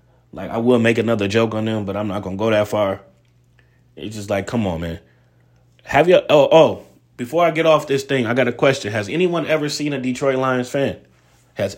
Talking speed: 230 wpm